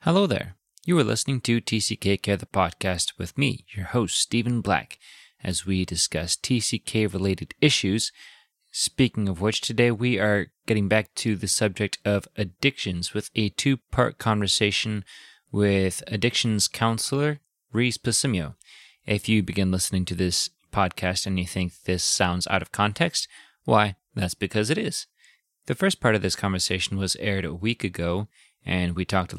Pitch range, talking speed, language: 90-110 Hz, 165 wpm, English